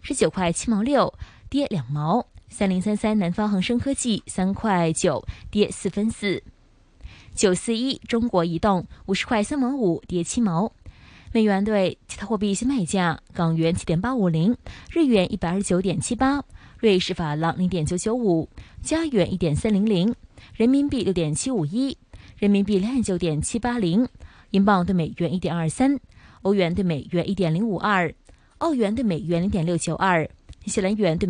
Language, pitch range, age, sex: Chinese, 175-230 Hz, 20-39, female